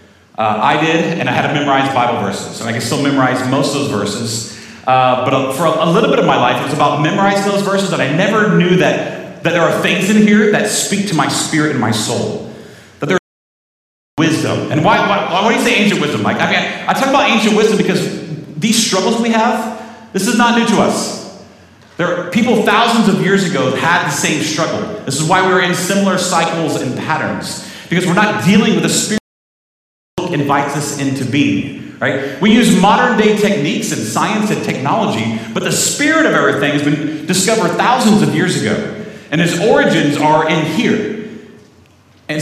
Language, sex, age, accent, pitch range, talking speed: English, male, 40-59, American, 140-200 Hz, 210 wpm